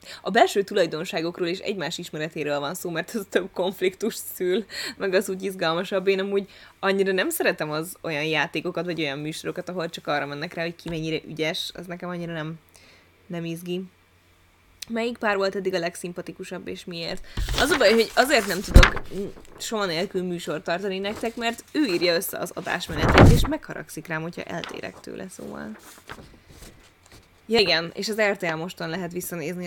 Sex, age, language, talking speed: female, 20-39, Hungarian, 170 wpm